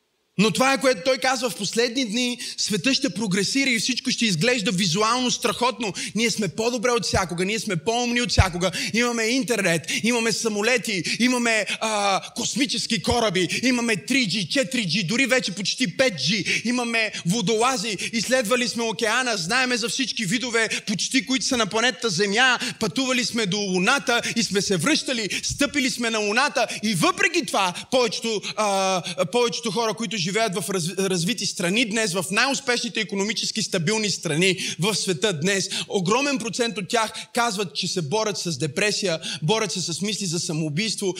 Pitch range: 195-245 Hz